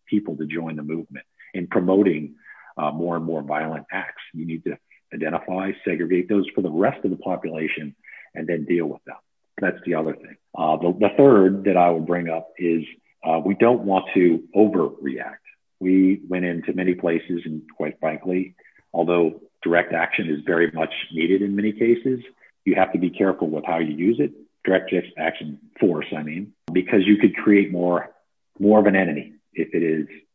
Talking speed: 190 wpm